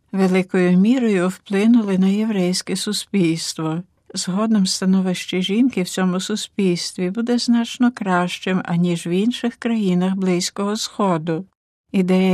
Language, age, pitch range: Ukrainian, 60-79, 180-220 Hz